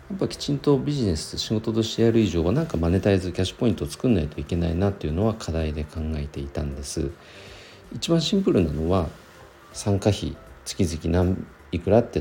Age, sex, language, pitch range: 50-69, male, Japanese, 80-115 Hz